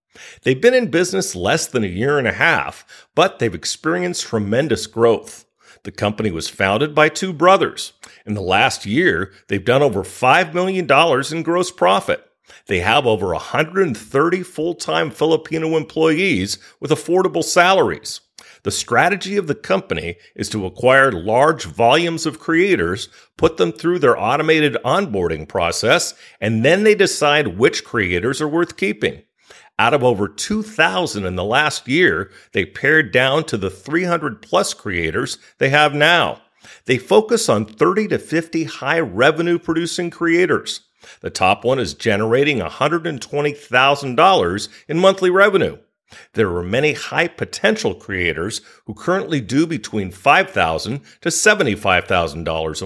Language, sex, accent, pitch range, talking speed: English, male, American, 115-180 Hz, 135 wpm